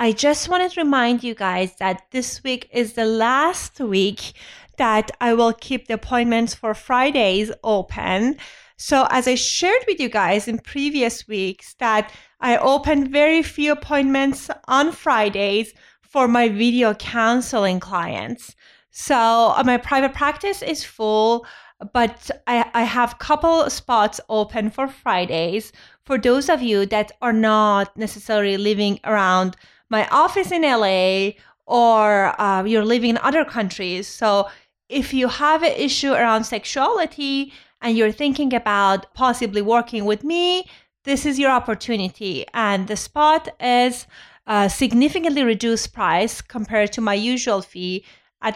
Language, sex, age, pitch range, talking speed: English, female, 30-49, 215-275 Hz, 145 wpm